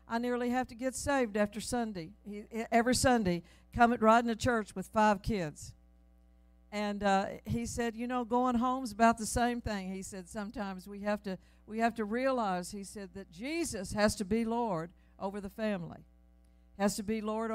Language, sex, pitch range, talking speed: English, female, 180-225 Hz, 190 wpm